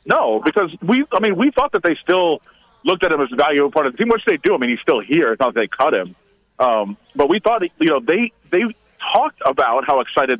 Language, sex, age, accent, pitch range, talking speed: English, male, 40-59, American, 135-170 Hz, 260 wpm